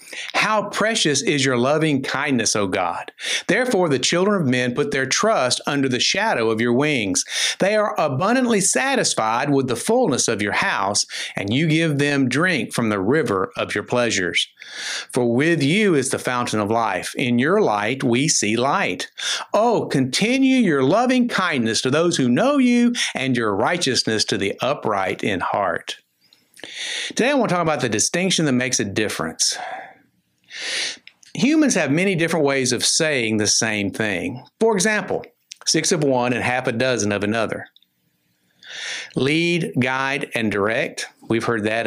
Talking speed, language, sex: 165 wpm, English, male